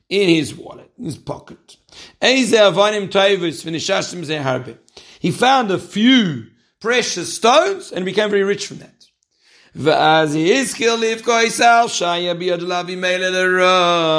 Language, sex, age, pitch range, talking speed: English, male, 60-79, 180-240 Hz, 75 wpm